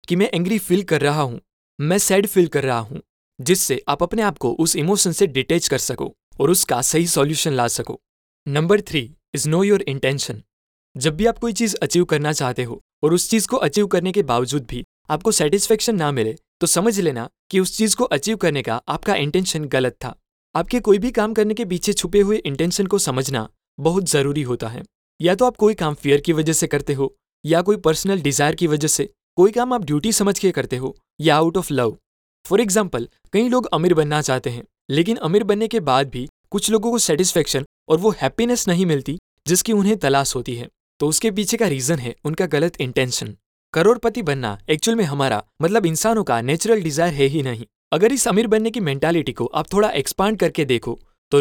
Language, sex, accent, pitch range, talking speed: Hindi, male, native, 140-205 Hz, 210 wpm